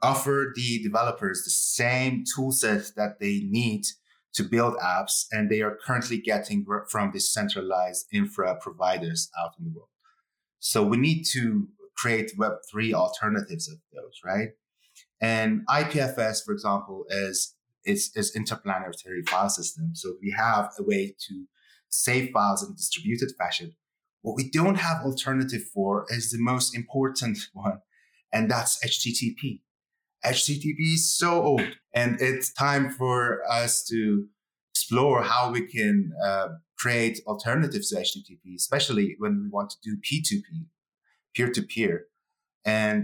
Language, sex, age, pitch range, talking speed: English, male, 30-49, 105-155 Hz, 140 wpm